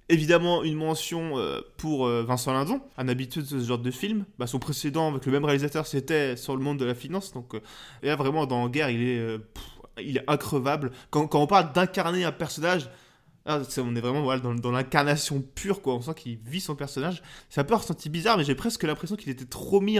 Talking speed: 235 wpm